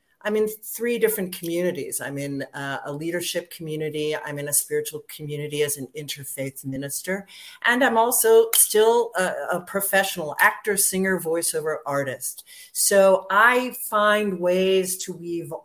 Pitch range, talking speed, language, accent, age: 150-190 Hz, 140 wpm, English, American, 40-59